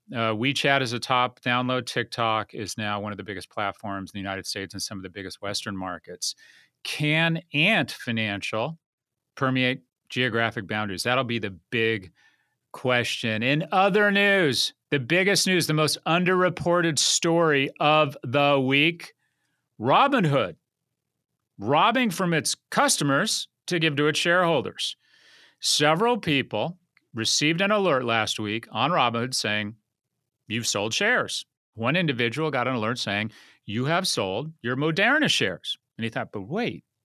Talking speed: 145 wpm